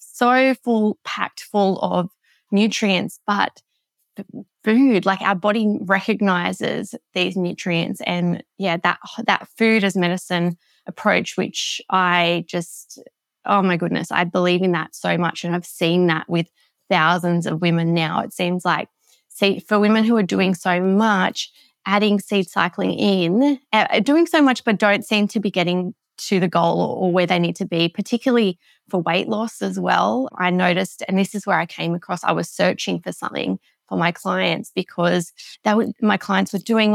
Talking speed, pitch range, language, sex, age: 170 wpm, 180-215 Hz, English, female, 20-39